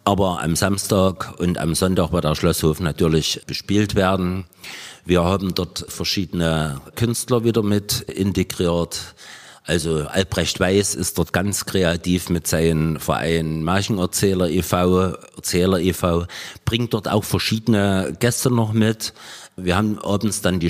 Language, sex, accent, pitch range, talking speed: German, male, German, 85-110 Hz, 135 wpm